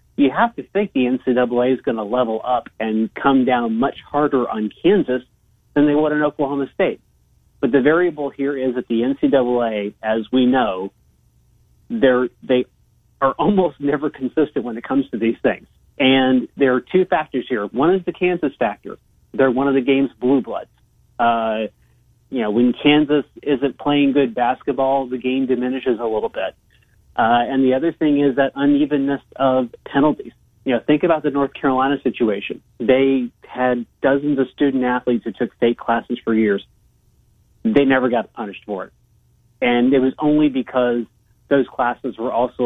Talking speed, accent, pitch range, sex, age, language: 175 wpm, American, 120-145 Hz, male, 40-59, English